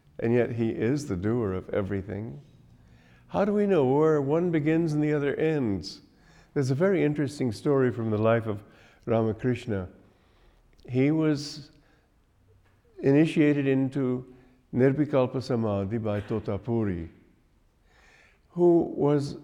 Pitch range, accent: 110-145 Hz, American